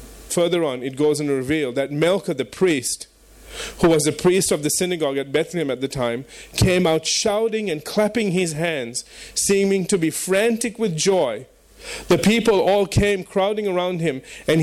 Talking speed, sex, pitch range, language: 175 wpm, male, 145-195 Hz, English